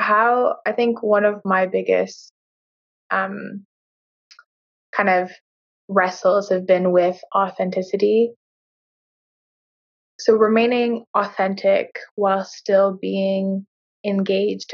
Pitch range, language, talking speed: 185-215 Hz, English, 90 wpm